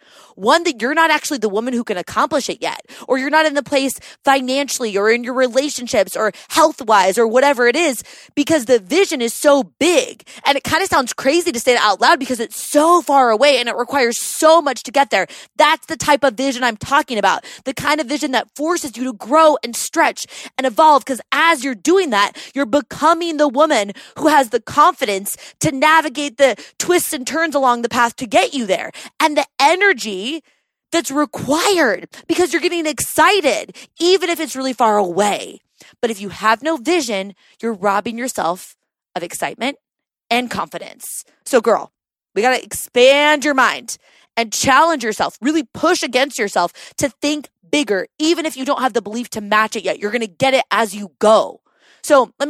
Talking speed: 200 wpm